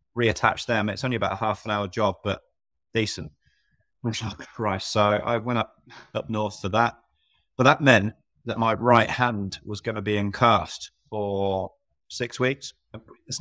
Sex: male